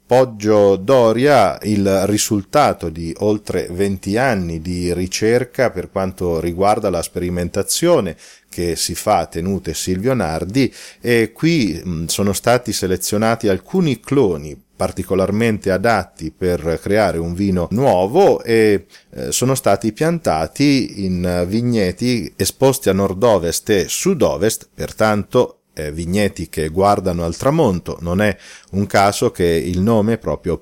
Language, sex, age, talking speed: Italian, male, 40-59, 125 wpm